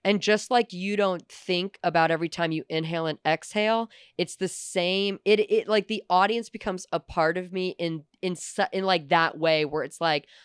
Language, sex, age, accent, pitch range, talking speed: English, female, 20-39, American, 165-200 Hz, 200 wpm